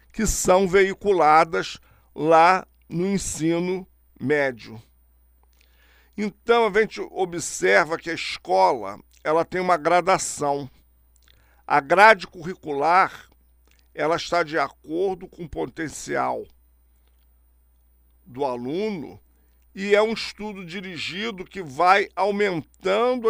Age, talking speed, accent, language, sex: 50-69, 95 wpm, Brazilian, Portuguese, male